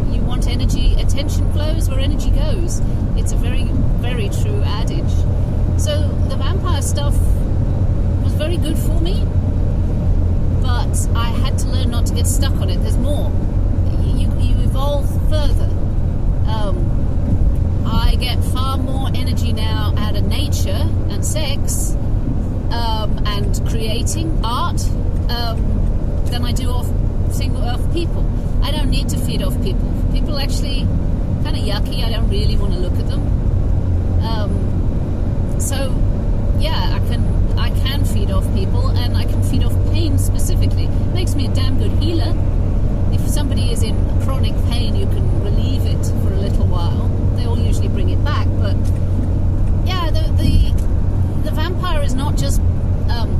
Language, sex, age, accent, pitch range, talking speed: English, female, 40-59, British, 90-100 Hz, 155 wpm